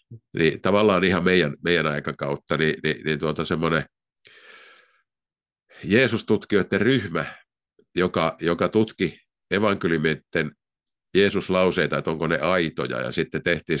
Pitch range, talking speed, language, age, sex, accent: 75-95 Hz, 110 wpm, Finnish, 50-69, male, native